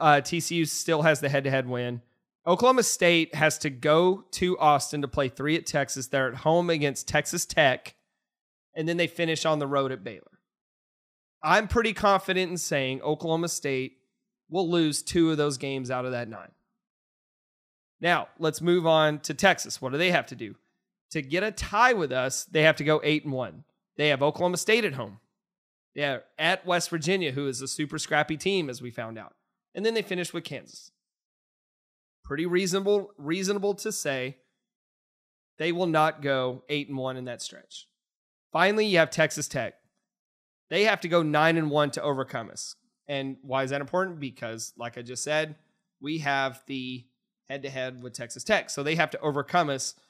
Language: English